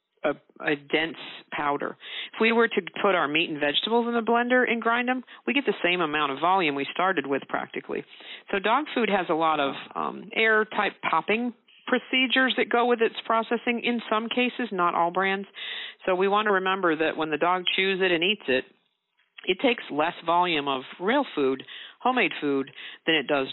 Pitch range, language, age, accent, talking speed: 145-210 Hz, English, 50-69, American, 200 wpm